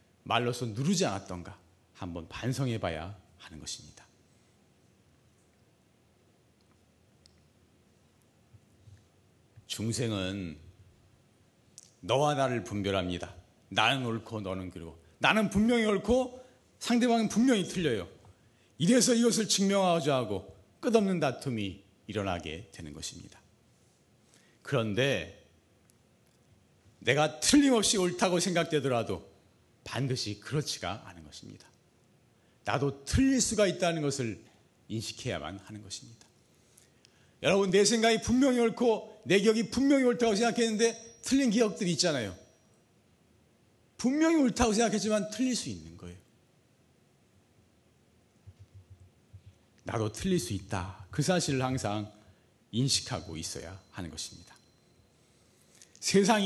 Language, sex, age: Korean, male, 40-59